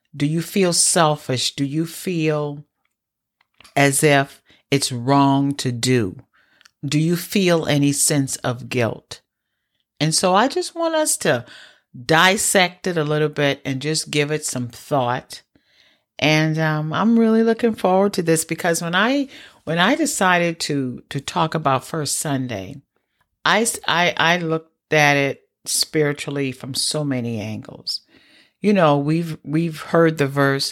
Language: English